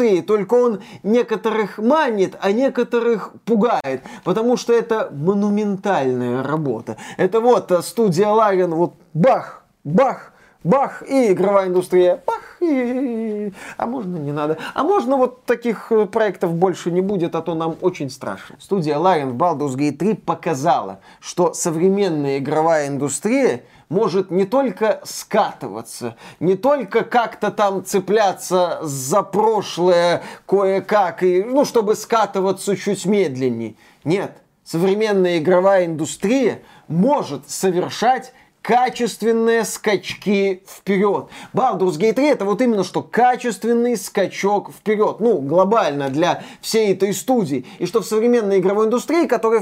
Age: 20-39